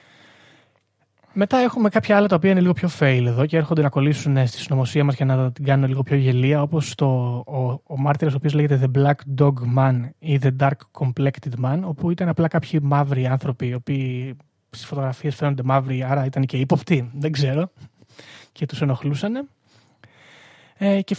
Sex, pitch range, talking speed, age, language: male, 130-160 Hz, 180 wpm, 20-39, Greek